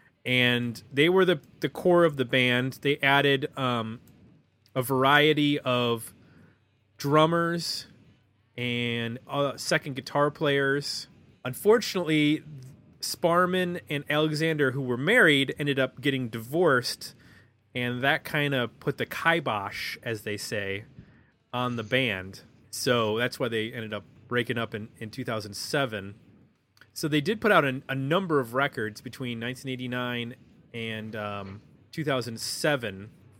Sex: male